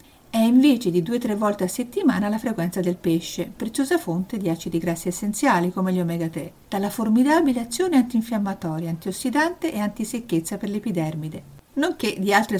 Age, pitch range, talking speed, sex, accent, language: 50-69, 180-250 Hz, 155 wpm, female, native, Italian